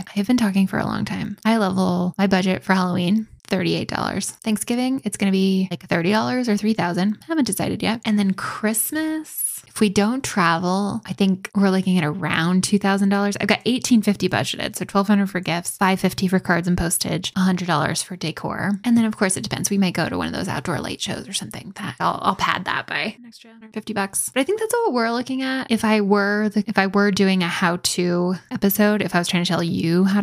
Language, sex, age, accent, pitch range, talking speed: English, female, 10-29, American, 180-215 Hz, 240 wpm